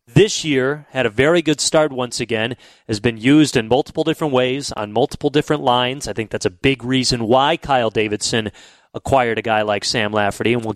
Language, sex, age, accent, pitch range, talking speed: English, male, 30-49, American, 120-155 Hz, 205 wpm